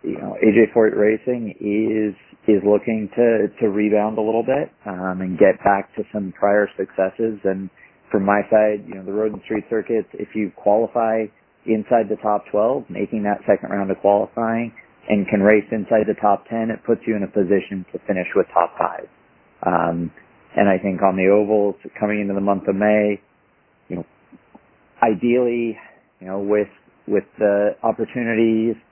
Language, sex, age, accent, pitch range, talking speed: English, male, 40-59, American, 100-110 Hz, 180 wpm